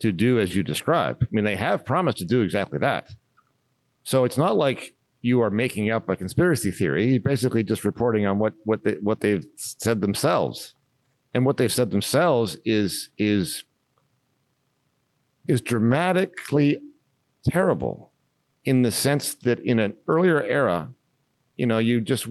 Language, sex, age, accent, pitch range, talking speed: English, male, 50-69, American, 100-135 Hz, 160 wpm